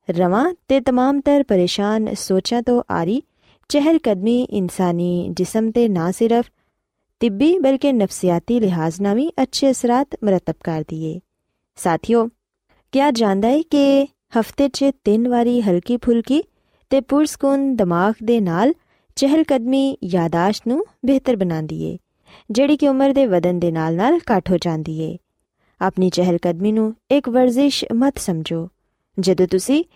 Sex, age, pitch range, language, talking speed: female, 20-39, 185-275 Hz, Punjabi, 140 wpm